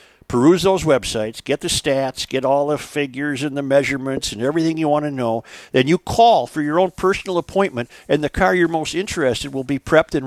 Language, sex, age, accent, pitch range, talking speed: English, male, 50-69, American, 120-175 Hz, 215 wpm